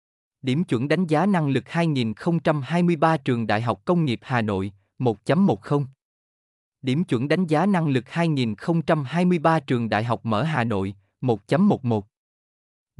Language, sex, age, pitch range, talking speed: Vietnamese, male, 20-39, 115-160 Hz, 135 wpm